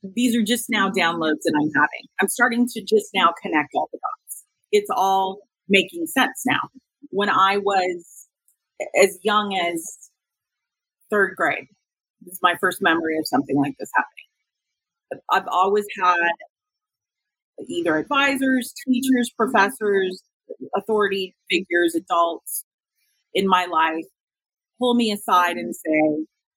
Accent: American